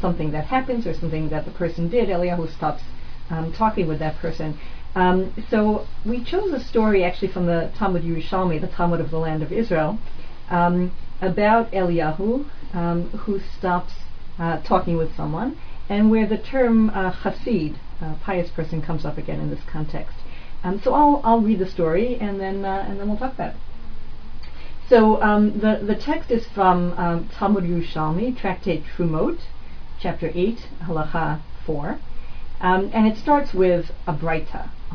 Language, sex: English, female